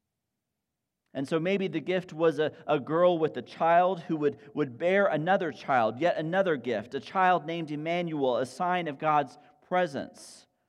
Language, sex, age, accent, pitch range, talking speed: English, male, 40-59, American, 155-205 Hz, 170 wpm